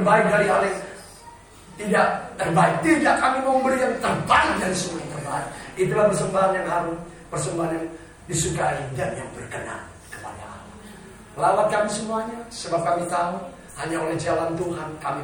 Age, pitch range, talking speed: 40-59, 155-190 Hz, 145 wpm